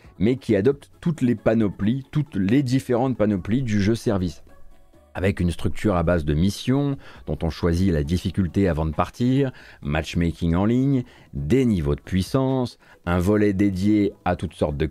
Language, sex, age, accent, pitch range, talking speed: French, male, 30-49, French, 85-120 Hz, 170 wpm